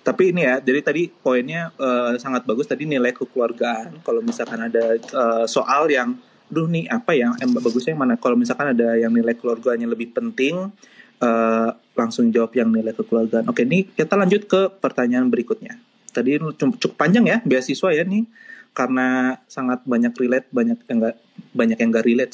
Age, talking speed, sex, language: 20-39, 165 wpm, male, Indonesian